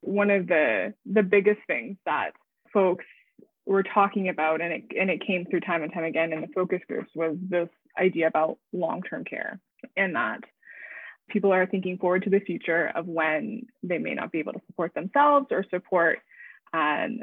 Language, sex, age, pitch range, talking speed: English, female, 20-39, 170-210 Hz, 180 wpm